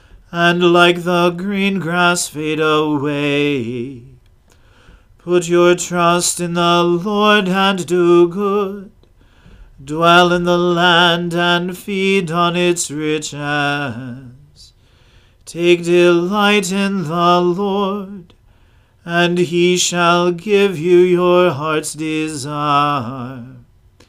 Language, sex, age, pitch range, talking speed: English, male, 40-59, 145-180 Hz, 95 wpm